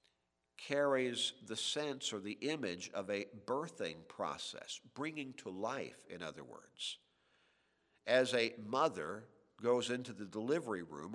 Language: English